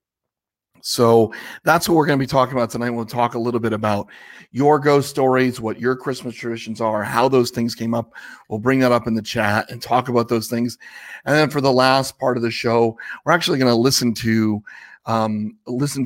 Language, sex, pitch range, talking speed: English, male, 115-135 Hz, 215 wpm